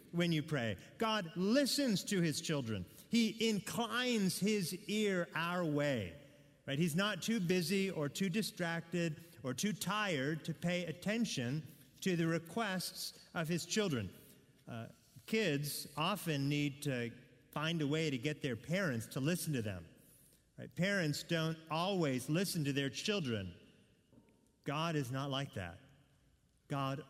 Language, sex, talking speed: English, male, 140 wpm